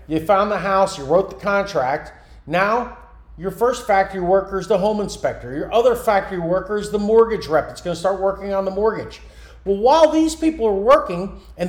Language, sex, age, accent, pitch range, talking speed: English, male, 40-59, American, 165-215 Hz, 200 wpm